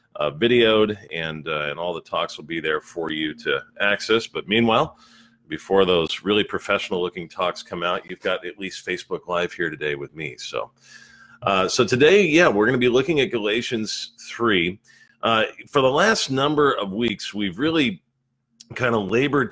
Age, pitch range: 40-59, 100-125 Hz